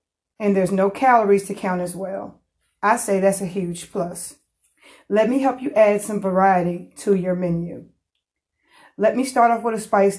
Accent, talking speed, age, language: American, 185 wpm, 30-49, English